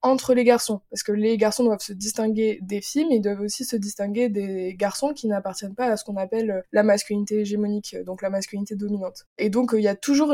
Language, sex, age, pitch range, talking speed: French, female, 20-39, 205-240 Hz, 230 wpm